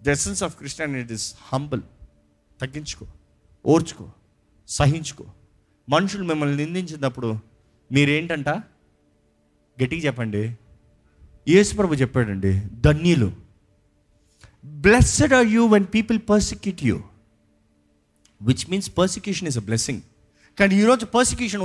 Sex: male